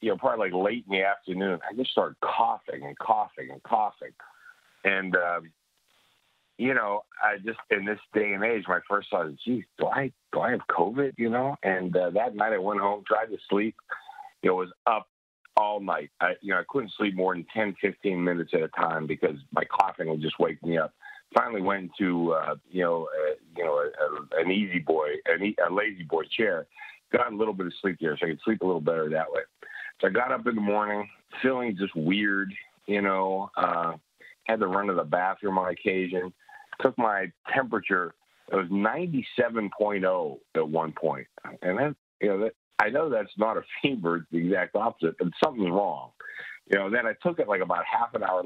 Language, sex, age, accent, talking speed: English, male, 50-69, American, 210 wpm